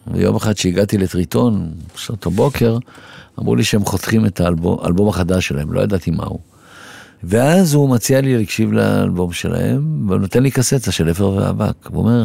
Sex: male